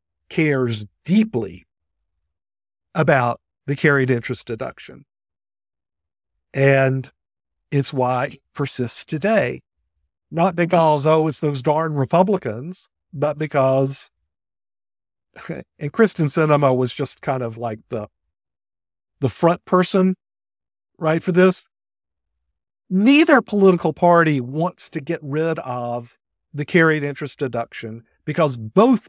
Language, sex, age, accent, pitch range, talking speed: English, male, 50-69, American, 100-160 Hz, 105 wpm